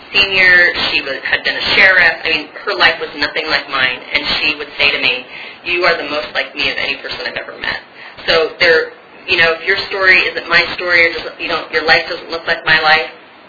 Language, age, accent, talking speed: English, 30-49, American, 240 wpm